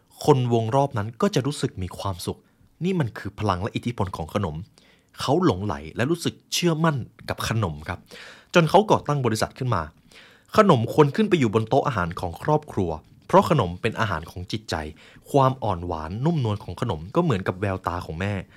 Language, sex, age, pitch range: Thai, male, 20-39, 90-125 Hz